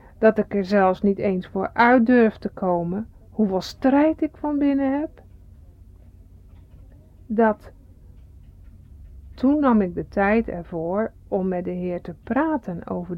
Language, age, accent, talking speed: Dutch, 60-79, Dutch, 140 wpm